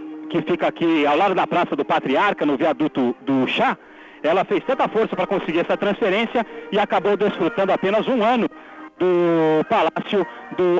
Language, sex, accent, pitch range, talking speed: Portuguese, male, Brazilian, 135-195 Hz, 165 wpm